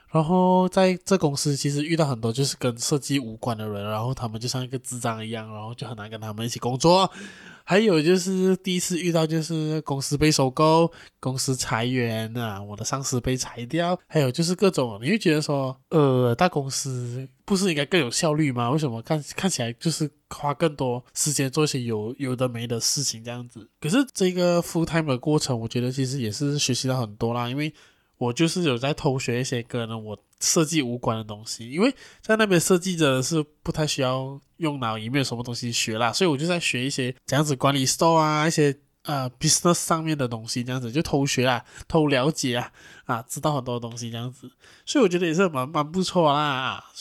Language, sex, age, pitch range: Chinese, male, 20-39, 125-170 Hz